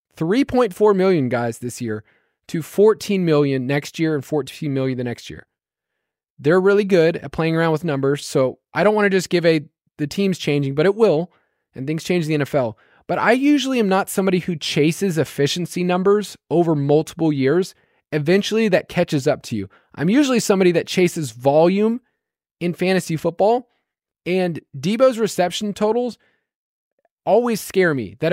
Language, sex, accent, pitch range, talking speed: English, male, American, 150-190 Hz, 165 wpm